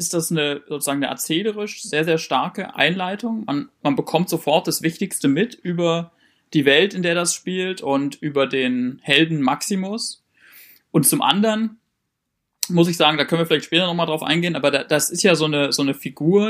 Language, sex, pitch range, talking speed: German, male, 145-175 Hz, 195 wpm